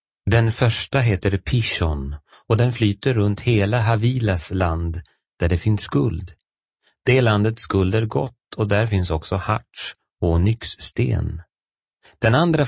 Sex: male